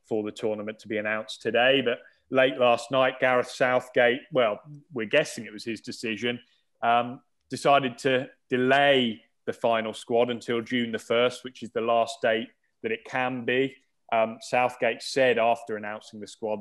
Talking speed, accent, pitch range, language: 170 wpm, British, 110-130 Hz, English